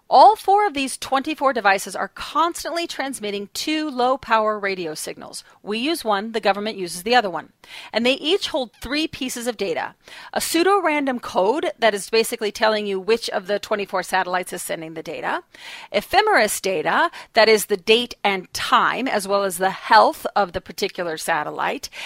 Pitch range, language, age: 205-315 Hz, English, 40-59